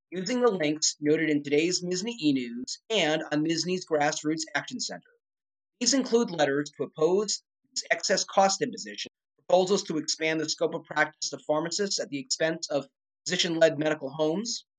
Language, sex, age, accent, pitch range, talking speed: English, male, 30-49, American, 150-205 Hz, 160 wpm